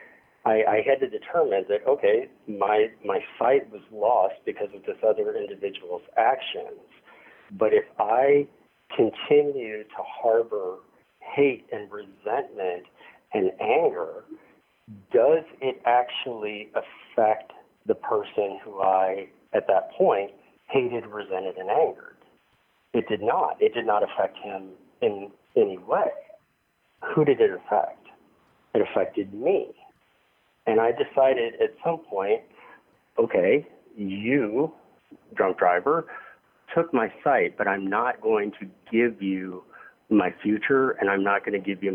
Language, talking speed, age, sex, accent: English, 130 wpm, 50-69, male, American